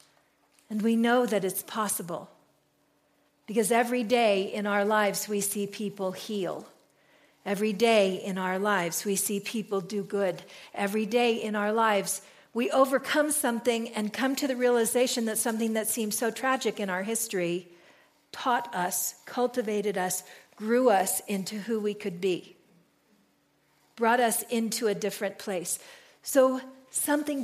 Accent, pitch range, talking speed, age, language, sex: American, 200-245 Hz, 145 wpm, 50-69, English, female